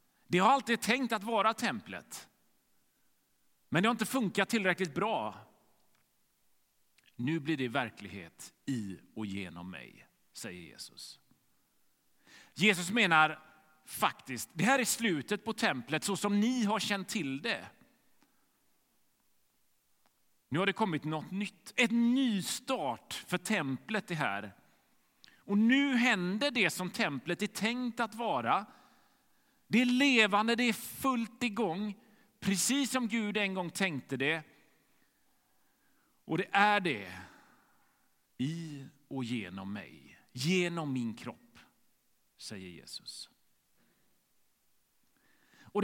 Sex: male